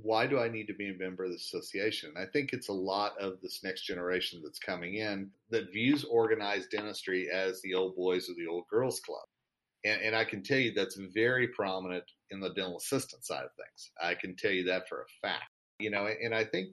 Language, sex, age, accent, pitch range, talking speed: English, male, 40-59, American, 95-115 Hz, 235 wpm